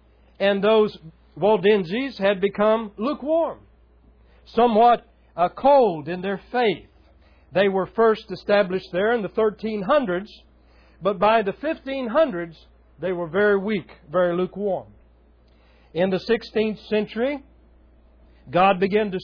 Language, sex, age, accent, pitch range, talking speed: English, male, 60-79, American, 160-225 Hz, 110 wpm